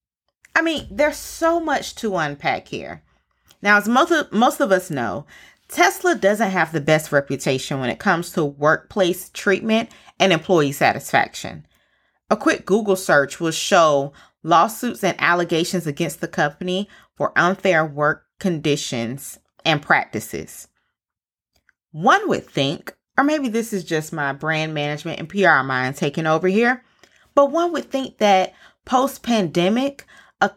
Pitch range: 155-220 Hz